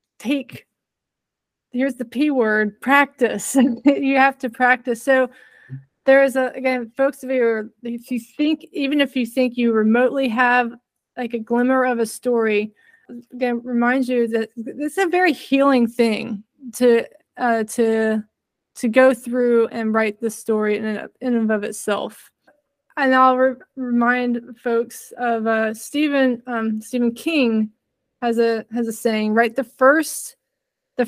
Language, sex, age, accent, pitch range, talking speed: English, female, 20-39, American, 225-260 Hz, 150 wpm